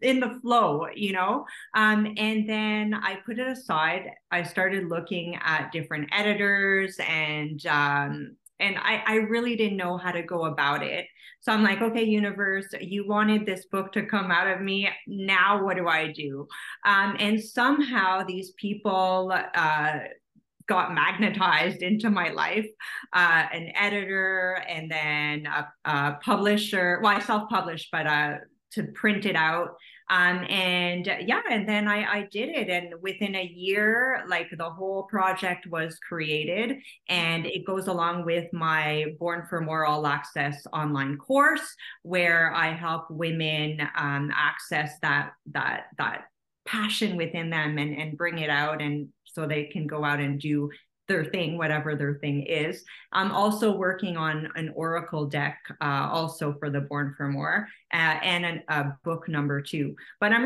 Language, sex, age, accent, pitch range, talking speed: English, female, 30-49, American, 155-205 Hz, 160 wpm